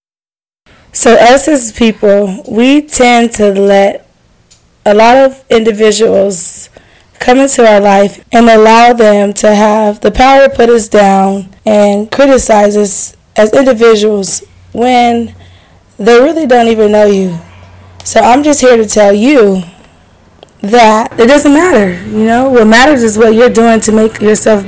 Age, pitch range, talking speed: 20-39, 205-230 Hz, 150 wpm